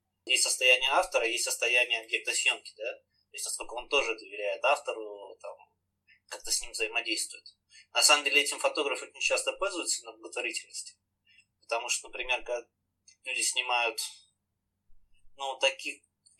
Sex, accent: male, native